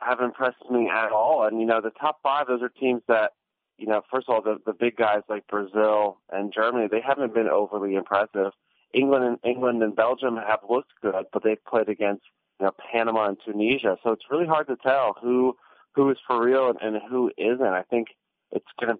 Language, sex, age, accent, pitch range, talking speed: English, male, 30-49, American, 105-120 Hz, 220 wpm